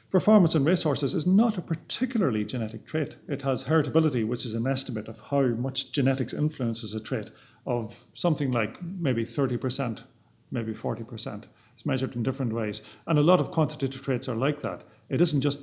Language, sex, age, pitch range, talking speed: English, male, 40-59, 115-145 Hz, 180 wpm